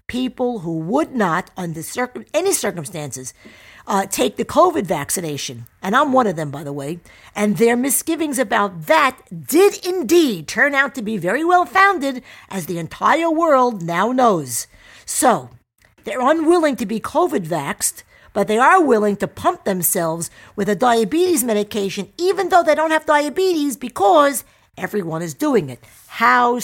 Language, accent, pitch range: English, American, 175-270 Hz